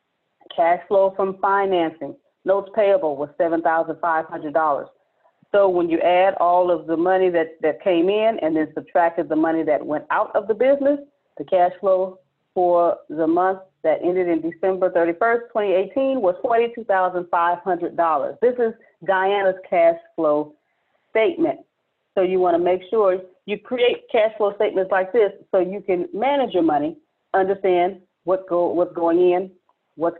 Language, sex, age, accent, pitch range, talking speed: English, female, 40-59, American, 175-235 Hz, 170 wpm